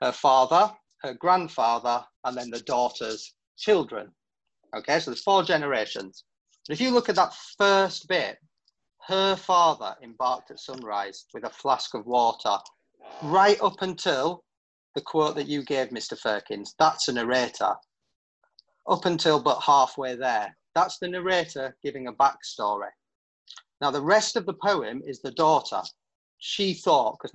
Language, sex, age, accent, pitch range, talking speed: English, male, 30-49, British, 130-175 Hz, 150 wpm